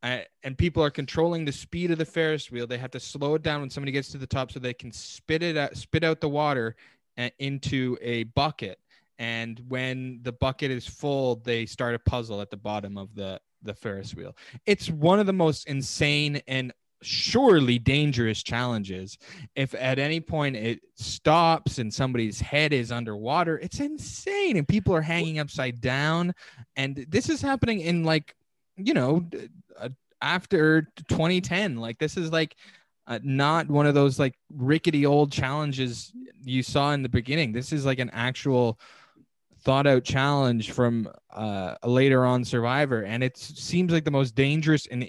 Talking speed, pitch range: 180 wpm, 120-155 Hz